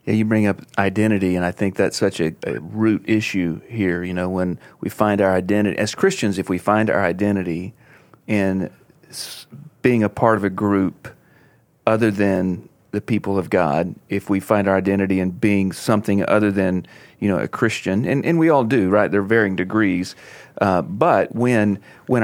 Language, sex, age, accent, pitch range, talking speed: English, male, 40-59, American, 95-110 Hz, 190 wpm